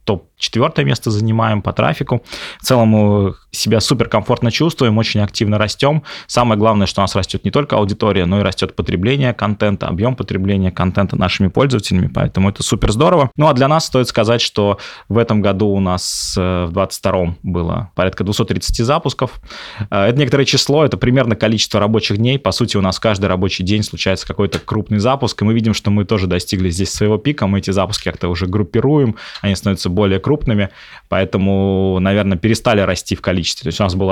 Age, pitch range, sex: 20-39, 100-125 Hz, male